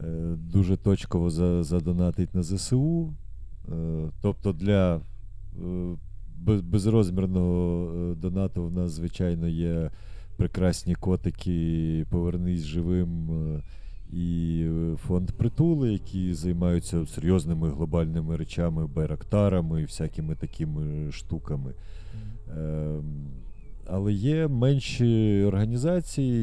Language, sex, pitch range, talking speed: Ukrainian, male, 80-100 Hz, 75 wpm